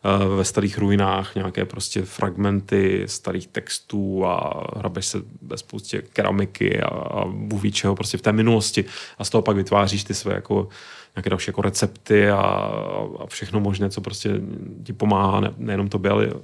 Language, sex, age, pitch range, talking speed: Czech, male, 30-49, 100-110 Hz, 170 wpm